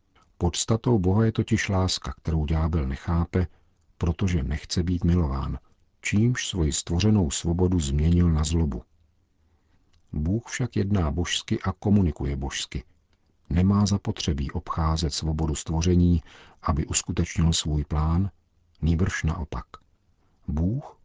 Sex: male